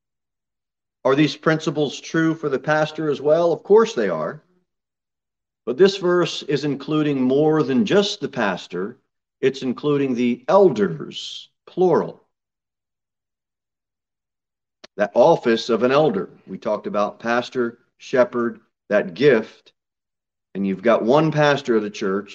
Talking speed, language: 130 wpm, English